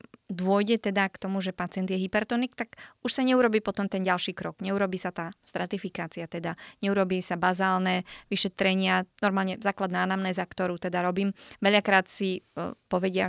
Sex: female